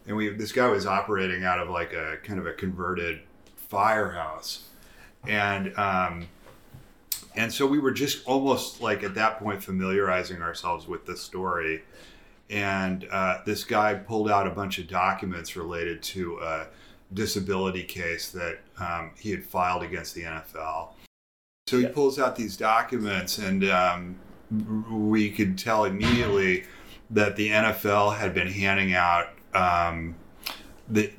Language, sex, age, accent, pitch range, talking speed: English, male, 30-49, American, 85-105 Hz, 145 wpm